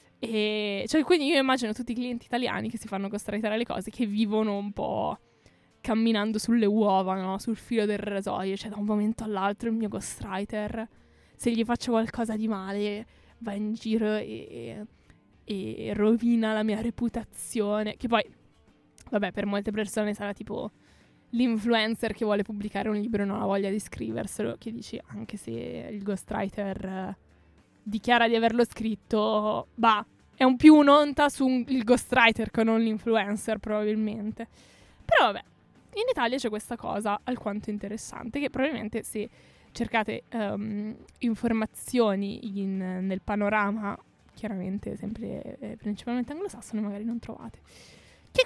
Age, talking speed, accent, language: 20-39, 150 wpm, native, Italian